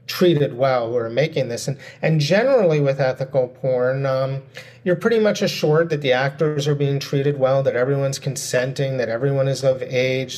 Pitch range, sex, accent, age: 135-180 Hz, male, American, 30-49